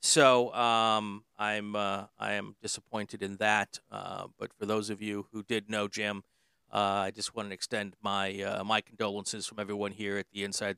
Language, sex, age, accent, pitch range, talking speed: English, male, 50-69, American, 105-135 Hz, 195 wpm